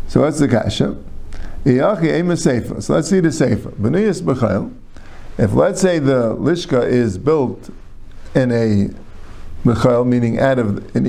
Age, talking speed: 50-69, 120 wpm